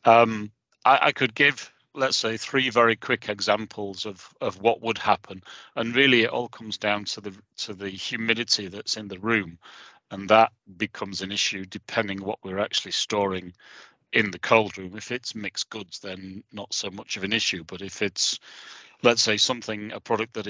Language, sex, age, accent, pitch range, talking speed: English, male, 40-59, British, 100-115 Hz, 190 wpm